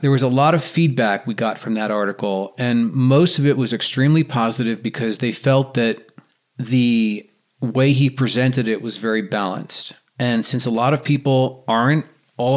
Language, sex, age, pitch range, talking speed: English, male, 40-59, 110-140 Hz, 180 wpm